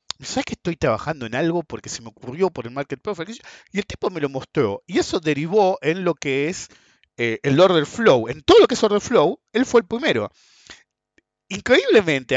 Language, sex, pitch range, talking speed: Spanish, male, 125-190 Hz, 210 wpm